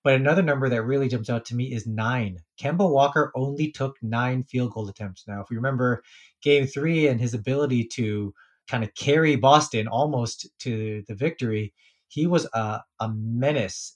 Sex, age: male, 20-39